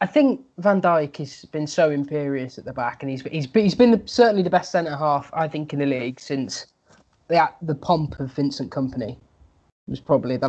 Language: English